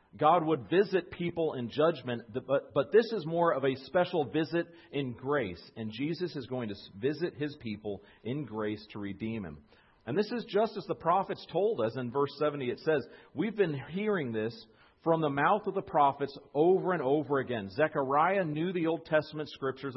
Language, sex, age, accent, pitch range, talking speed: English, male, 40-59, American, 125-170 Hz, 190 wpm